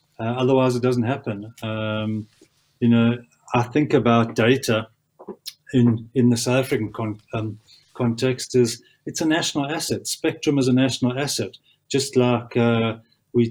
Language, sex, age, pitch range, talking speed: English, male, 40-59, 115-125 Hz, 150 wpm